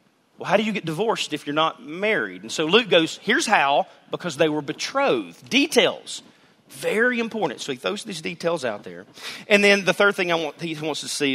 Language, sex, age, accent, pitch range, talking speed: English, male, 40-59, American, 140-215 Hz, 210 wpm